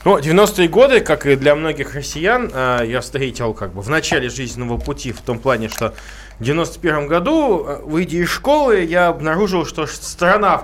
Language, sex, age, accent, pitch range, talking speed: Russian, male, 20-39, native, 125-170 Hz, 175 wpm